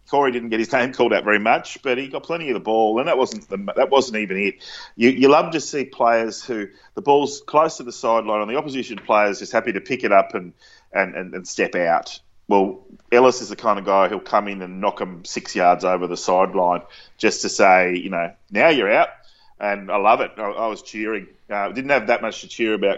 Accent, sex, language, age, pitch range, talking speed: Australian, male, English, 30-49, 95-120 Hz, 250 wpm